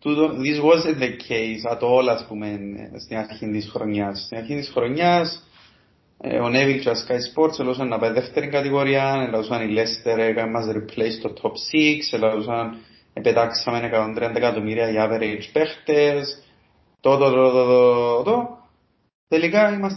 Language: Greek